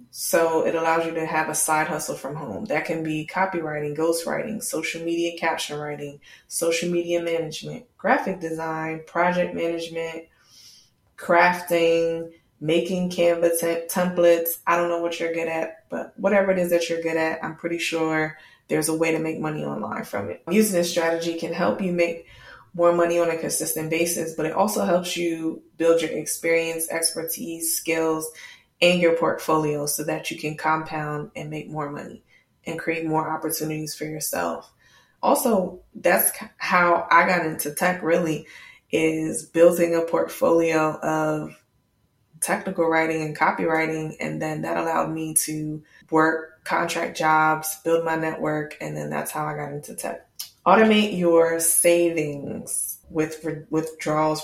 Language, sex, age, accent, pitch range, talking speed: English, female, 20-39, American, 155-170 Hz, 155 wpm